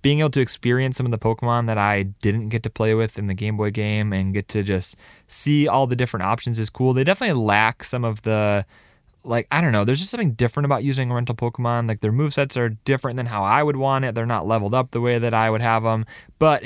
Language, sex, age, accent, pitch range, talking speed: English, male, 20-39, American, 105-130 Hz, 265 wpm